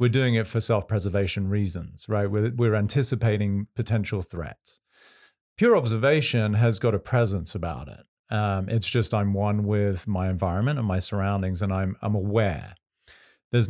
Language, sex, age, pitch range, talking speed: English, male, 40-59, 95-120 Hz, 160 wpm